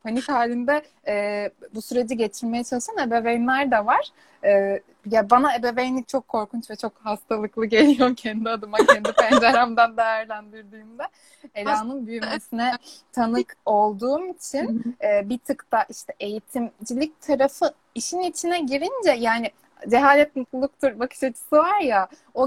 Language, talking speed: Turkish, 130 wpm